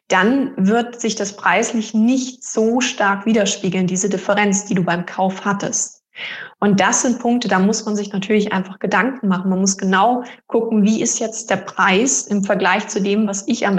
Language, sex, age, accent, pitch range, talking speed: German, female, 20-39, German, 195-225 Hz, 190 wpm